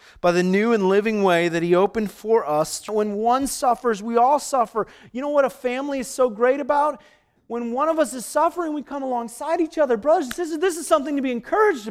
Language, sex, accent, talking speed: English, male, American, 225 wpm